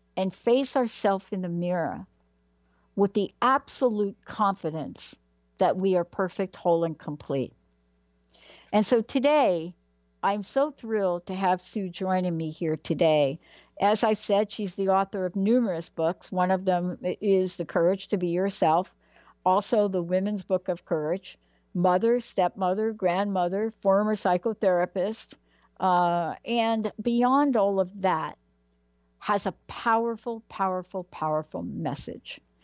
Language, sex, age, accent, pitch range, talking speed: English, female, 60-79, American, 165-210 Hz, 130 wpm